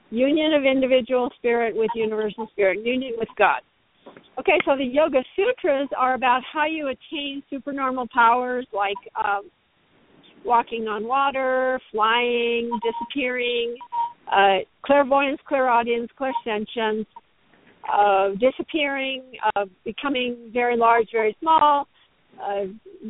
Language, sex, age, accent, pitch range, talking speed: English, female, 50-69, American, 230-285 Hz, 110 wpm